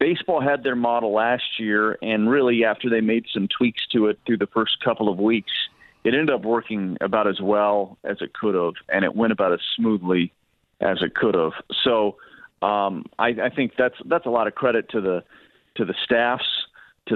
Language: English